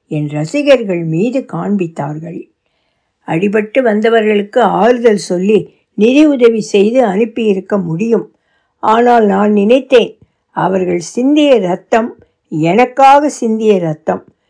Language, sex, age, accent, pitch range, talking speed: Tamil, female, 60-79, native, 180-245 Hz, 85 wpm